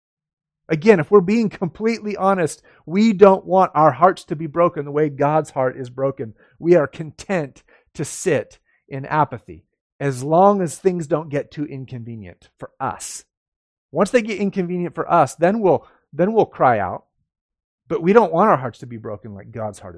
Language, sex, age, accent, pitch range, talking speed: English, male, 40-59, American, 105-155 Hz, 185 wpm